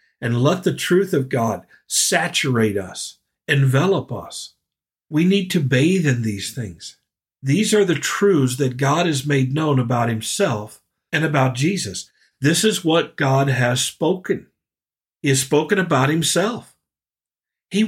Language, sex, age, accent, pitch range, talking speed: English, male, 50-69, American, 125-170 Hz, 145 wpm